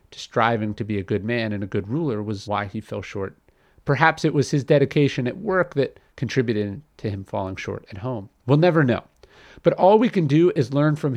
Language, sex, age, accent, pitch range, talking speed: English, male, 40-59, American, 100-145 Hz, 225 wpm